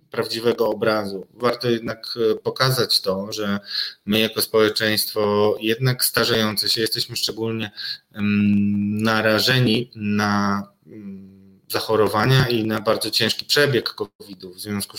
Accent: native